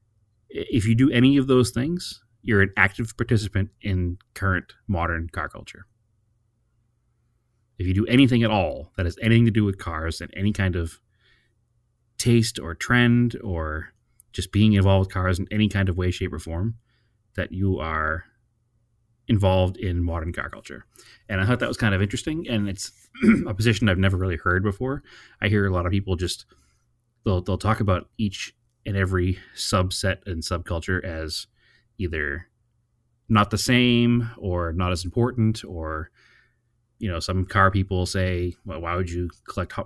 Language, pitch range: English, 90-115 Hz